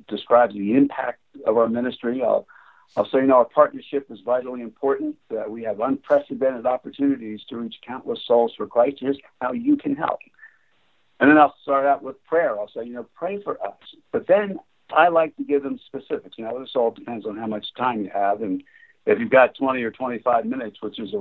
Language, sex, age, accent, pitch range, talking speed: English, male, 60-79, American, 120-180 Hz, 215 wpm